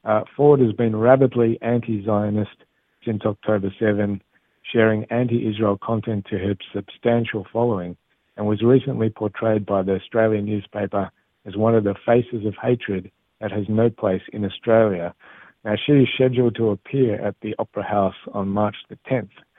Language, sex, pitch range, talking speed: Hebrew, male, 100-115 Hz, 155 wpm